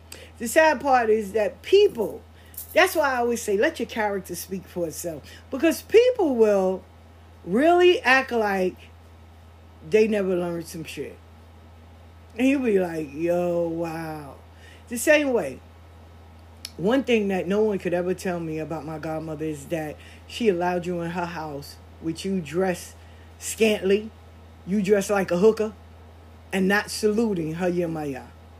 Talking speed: 150 wpm